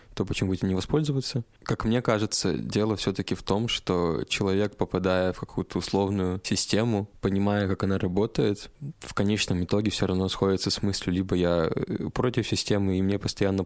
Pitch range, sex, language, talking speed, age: 95-110 Hz, male, Russian, 165 wpm, 20-39